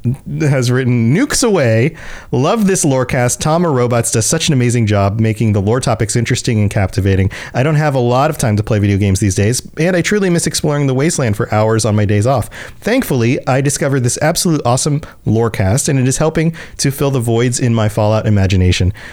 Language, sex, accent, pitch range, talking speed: English, male, American, 110-150 Hz, 215 wpm